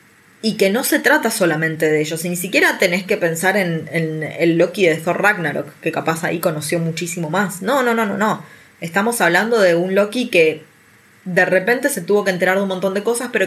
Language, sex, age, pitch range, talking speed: Spanish, female, 20-39, 170-215 Hz, 220 wpm